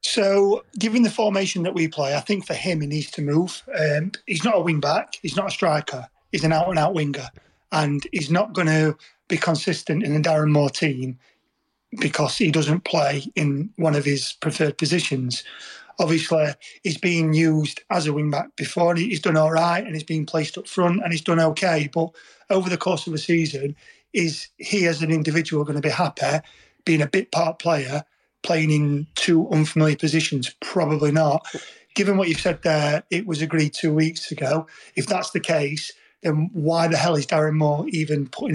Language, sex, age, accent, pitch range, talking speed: English, male, 30-49, British, 155-175 Hz, 195 wpm